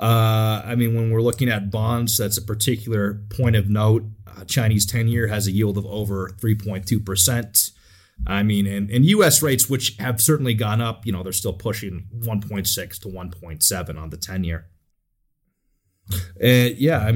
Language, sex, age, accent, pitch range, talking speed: English, male, 30-49, American, 100-120 Hz, 170 wpm